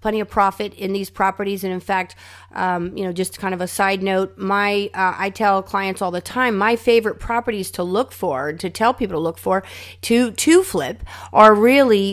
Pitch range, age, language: 185-220 Hz, 30-49, English